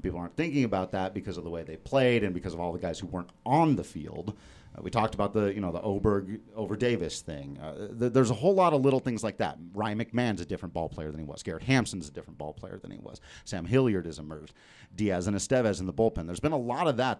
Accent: American